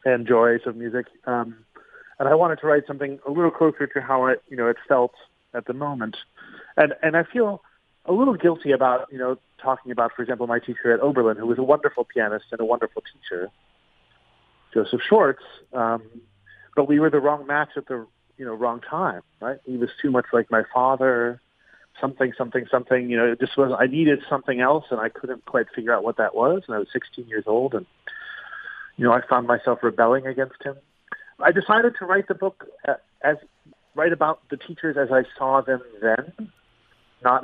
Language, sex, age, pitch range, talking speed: English, male, 40-59, 120-145 Hz, 205 wpm